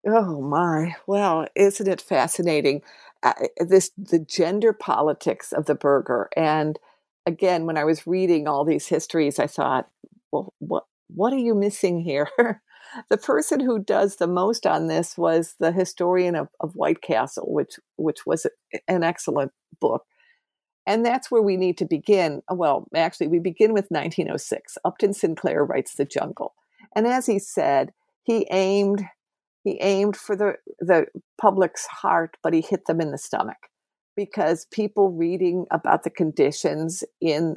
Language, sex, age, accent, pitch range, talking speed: English, female, 50-69, American, 160-205 Hz, 155 wpm